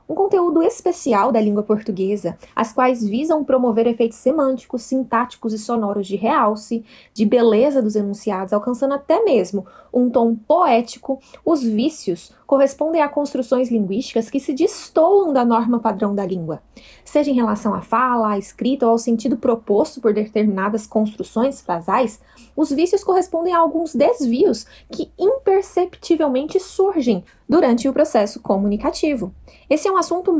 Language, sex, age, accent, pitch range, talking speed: Portuguese, female, 20-39, Brazilian, 225-315 Hz, 145 wpm